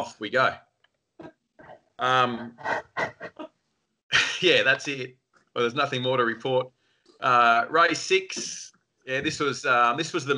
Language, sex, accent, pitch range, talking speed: English, male, Australian, 105-125 Hz, 135 wpm